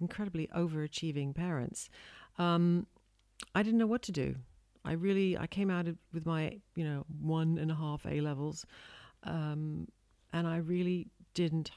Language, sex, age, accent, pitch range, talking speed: English, female, 50-69, British, 140-185 Hz, 145 wpm